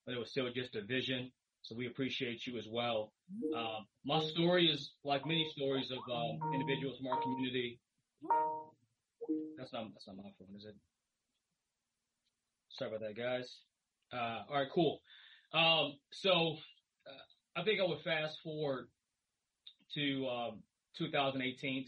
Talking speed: 145 wpm